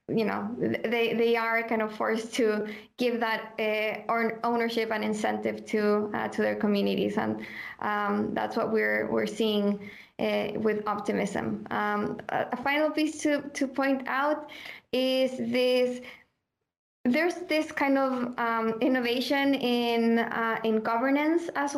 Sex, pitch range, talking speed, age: female, 225-255 Hz, 140 wpm, 20-39